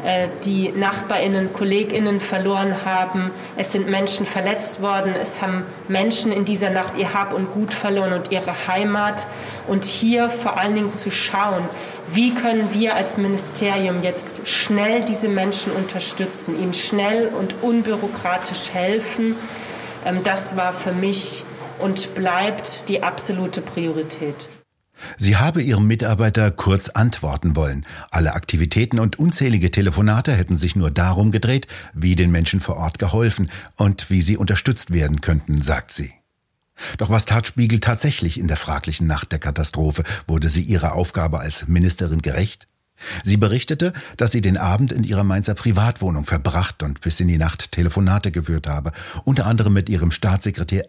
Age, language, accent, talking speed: 30-49, German, German, 150 wpm